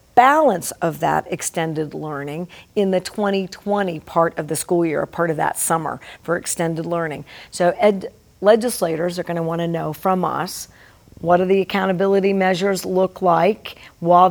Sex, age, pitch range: female, 50-69, 170-195 Hz